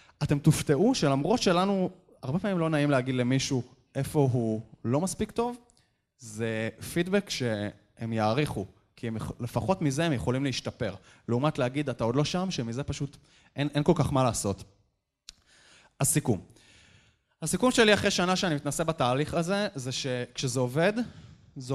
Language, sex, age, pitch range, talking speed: Hebrew, male, 20-39, 115-155 Hz, 150 wpm